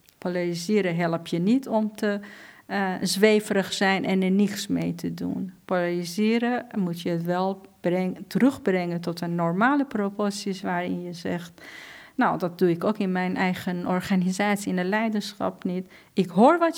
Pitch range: 180-220 Hz